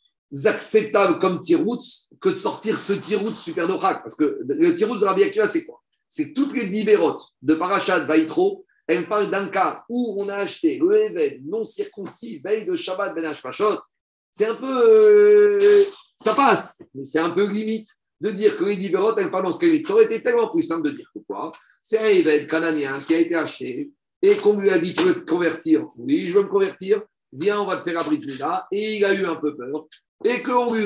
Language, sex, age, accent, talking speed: French, male, 50-69, French, 215 wpm